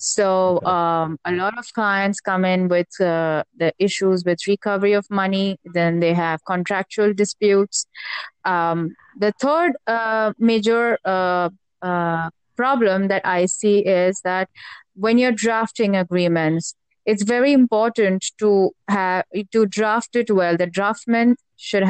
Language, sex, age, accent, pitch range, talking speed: English, female, 30-49, Indian, 180-210 Hz, 140 wpm